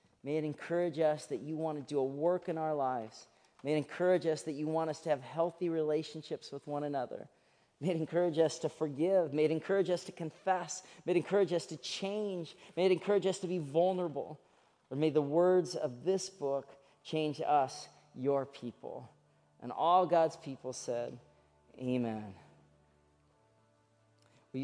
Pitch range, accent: 125-160 Hz, American